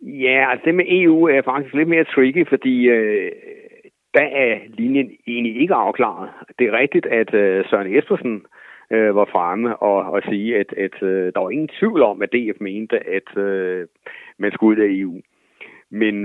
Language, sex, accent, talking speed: English, male, Danish, 175 wpm